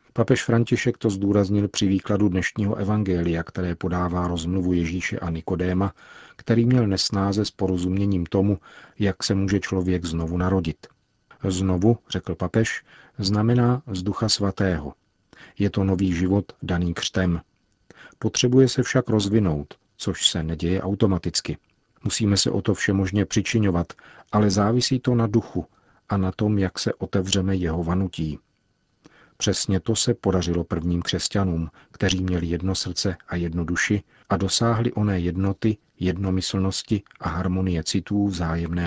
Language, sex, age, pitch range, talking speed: Czech, male, 40-59, 90-105 Hz, 135 wpm